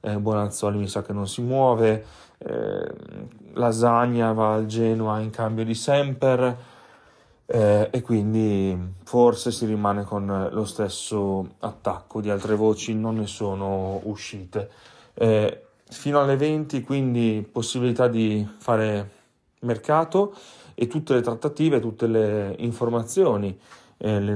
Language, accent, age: Italian, native, 30-49